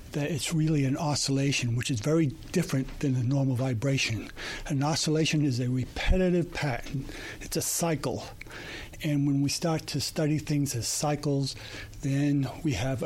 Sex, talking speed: male, 155 wpm